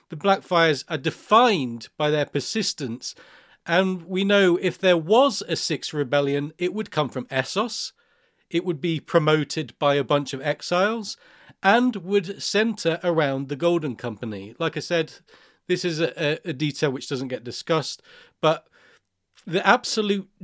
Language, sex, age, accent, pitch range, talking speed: English, male, 40-59, British, 135-175 Hz, 155 wpm